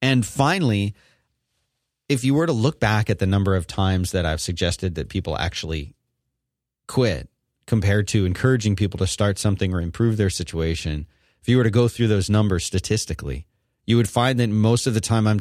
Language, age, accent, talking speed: English, 30-49, American, 190 wpm